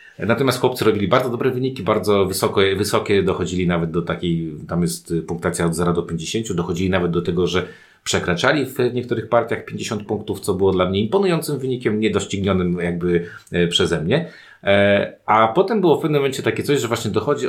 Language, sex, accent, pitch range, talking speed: Polish, male, native, 95-135 Hz, 180 wpm